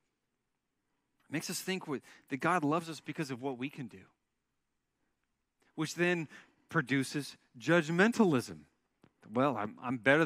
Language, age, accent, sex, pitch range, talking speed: English, 40-59, American, male, 140-185 Hz, 125 wpm